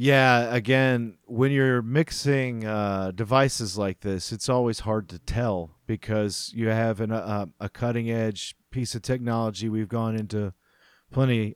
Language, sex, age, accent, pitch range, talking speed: English, male, 40-59, American, 110-130 Hz, 150 wpm